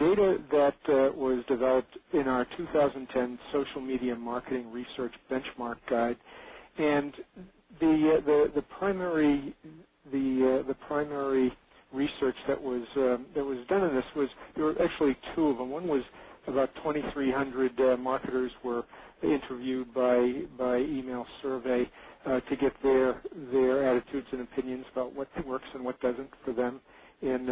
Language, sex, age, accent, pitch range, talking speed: English, male, 50-69, American, 125-145 Hz, 150 wpm